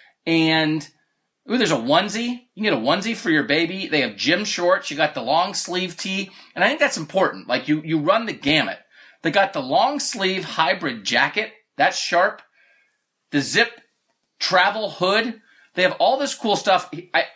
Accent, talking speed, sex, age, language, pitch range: American, 180 wpm, male, 30-49, English, 155-220 Hz